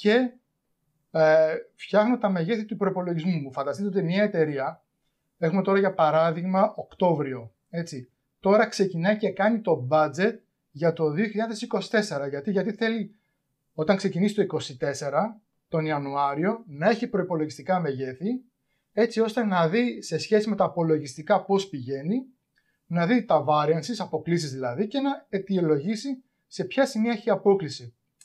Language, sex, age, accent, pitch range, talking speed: Greek, male, 30-49, native, 155-215 Hz, 140 wpm